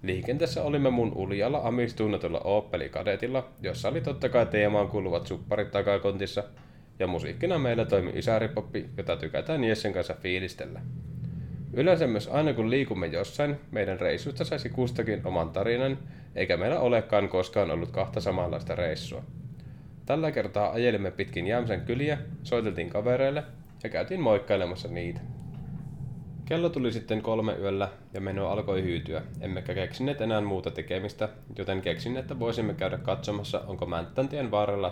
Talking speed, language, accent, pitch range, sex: 135 wpm, Finnish, native, 100-145 Hz, male